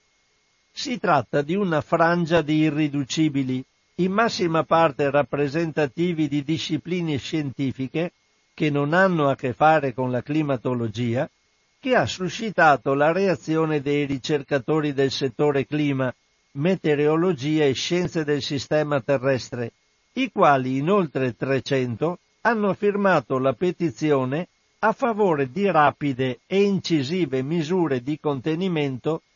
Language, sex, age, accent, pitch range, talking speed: Italian, male, 60-79, native, 135-175 Hz, 115 wpm